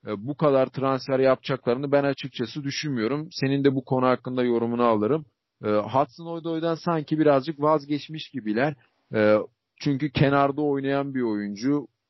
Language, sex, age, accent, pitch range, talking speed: Turkish, male, 40-59, native, 125-150 Hz, 125 wpm